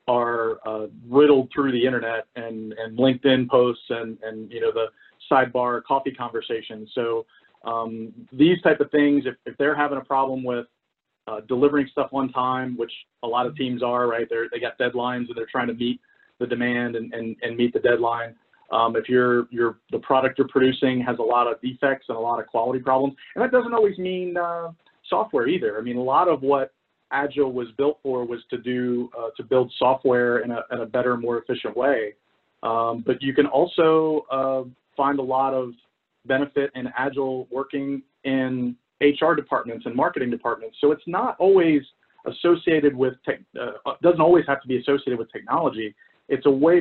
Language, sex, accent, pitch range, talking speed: English, male, American, 120-140 Hz, 195 wpm